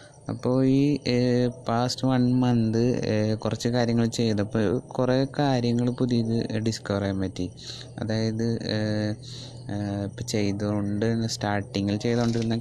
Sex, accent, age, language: male, native, 20-39, Malayalam